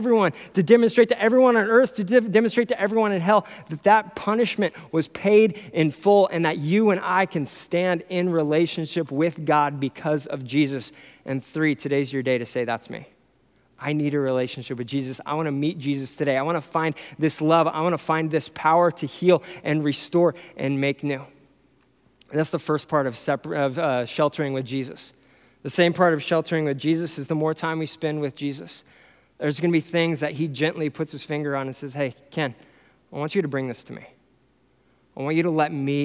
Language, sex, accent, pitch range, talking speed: English, male, American, 140-175 Hz, 205 wpm